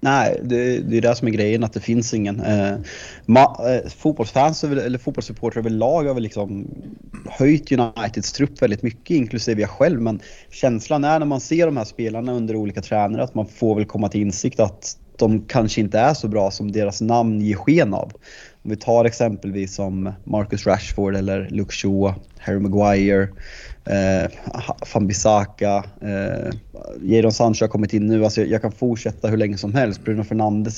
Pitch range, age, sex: 100-120 Hz, 30-49, male